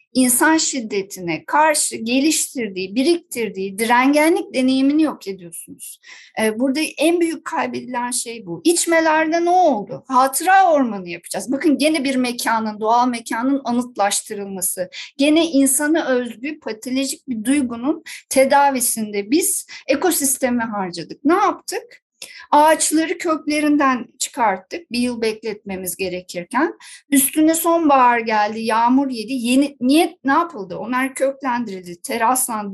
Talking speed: 110 wpm